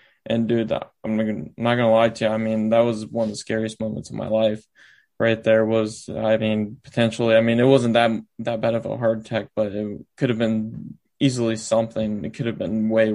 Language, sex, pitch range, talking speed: English, male, 110-115 Hz, 225 wpm